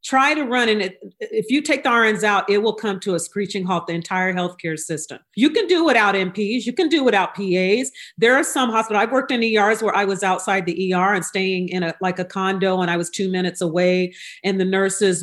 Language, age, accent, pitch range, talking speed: English, 40-59, American, 180-215 Hz, 245 wpm